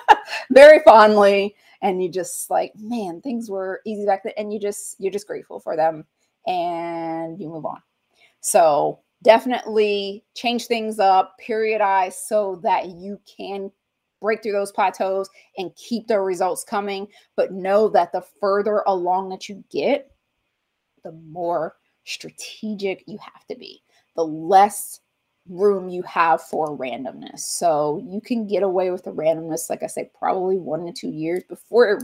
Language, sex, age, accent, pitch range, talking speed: English, female, 20-39, American, 170-215 Hz, 155 wpm